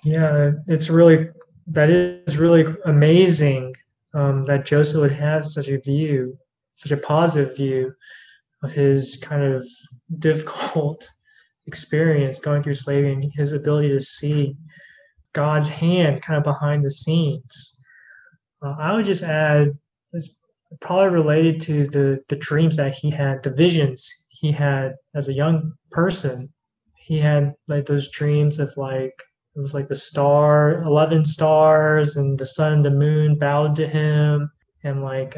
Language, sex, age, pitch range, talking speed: English, male, 20-39, 140-155 Hz, 150 wpm